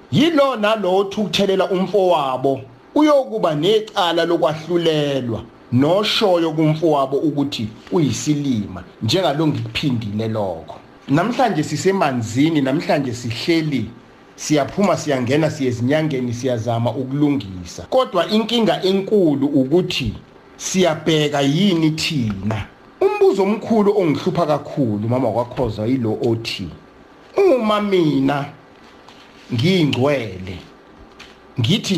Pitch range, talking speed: 125-195 Hz, 100 wpm